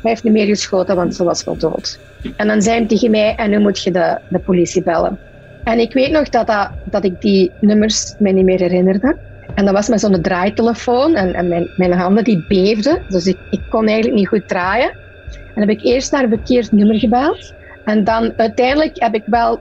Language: Dutch